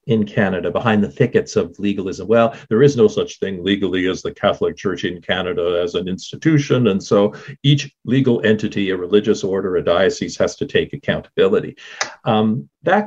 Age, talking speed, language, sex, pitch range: 50-69, 180 wpm, English, male, 100-145 Hz